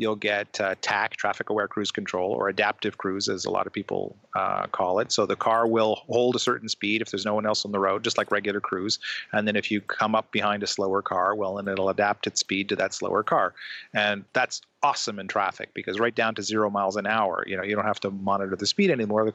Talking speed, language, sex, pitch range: 255 wpm, English, male, 105-120 Hz